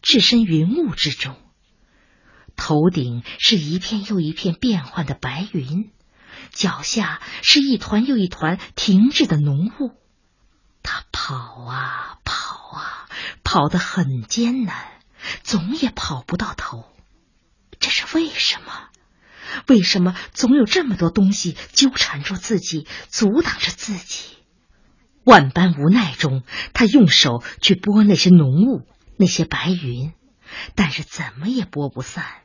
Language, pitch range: Chinese, 155-230 Hz